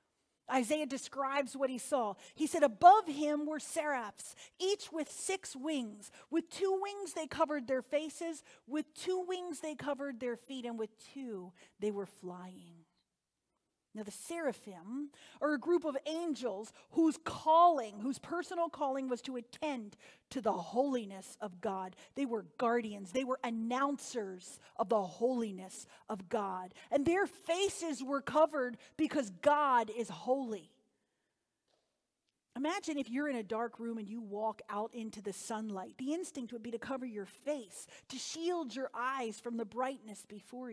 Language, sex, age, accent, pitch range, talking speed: English, female, 40-59, American, 215-295 Hz, 155 wpm